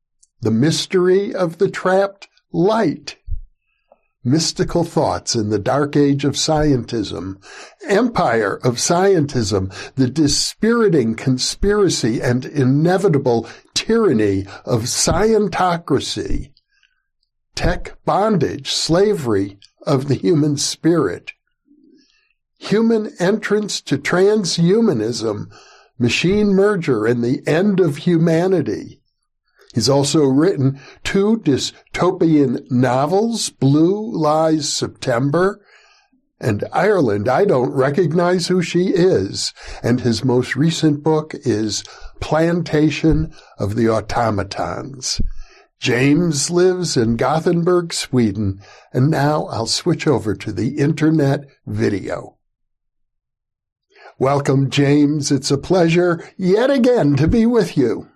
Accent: American